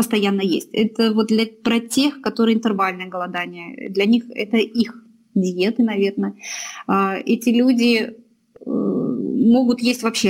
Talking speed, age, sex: 120 wpm, 20-39, female